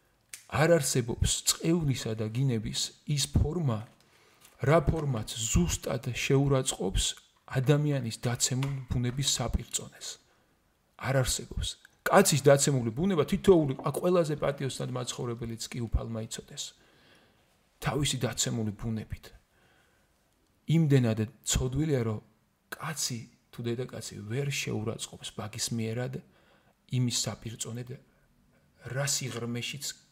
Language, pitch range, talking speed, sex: English, 115-140 Hz, 65 wpm, male